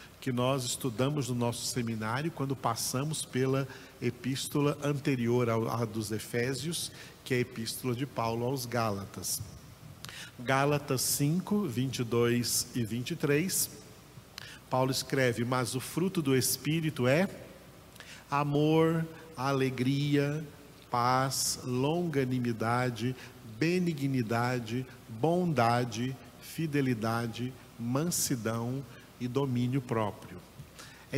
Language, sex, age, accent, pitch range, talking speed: Portuguese, male, 50-69, Brazilian, 120-150 Hz, 90 wpm